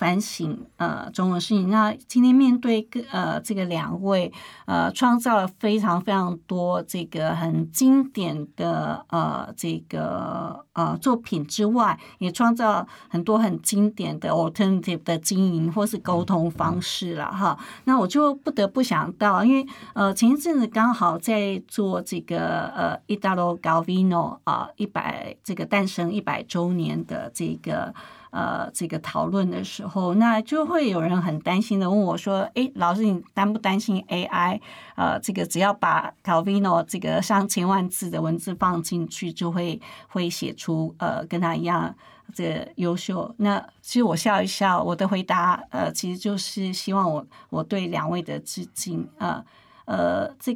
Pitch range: 175-215 Hz